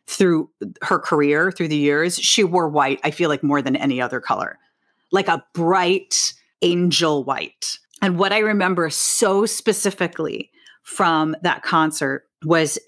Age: 40-59